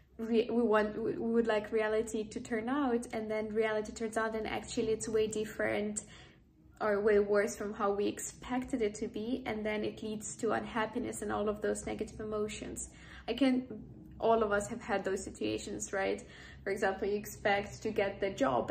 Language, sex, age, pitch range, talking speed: English, female, 10-29, 210-235 Hz, 190 wpm